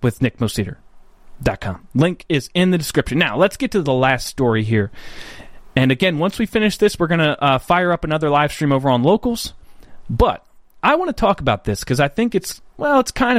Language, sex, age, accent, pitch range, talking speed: English, male, 30-49, American, 140-205 Hz, 210 wpm